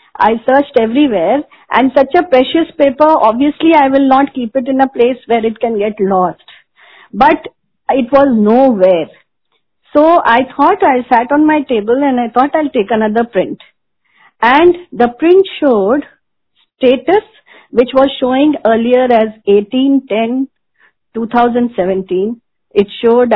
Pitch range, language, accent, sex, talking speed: 215-280 Hz, Hindi, native, female, 145 wpm